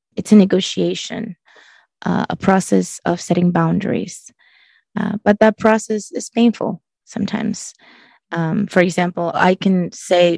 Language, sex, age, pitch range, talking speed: English, female, 20-39, 175-205 Hz, 125 wpm